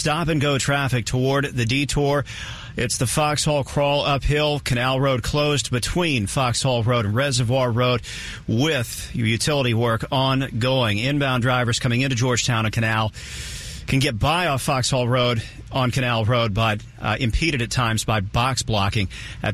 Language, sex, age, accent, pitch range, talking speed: English, male, 40-59, American, 115-140 Hz, 165 wpm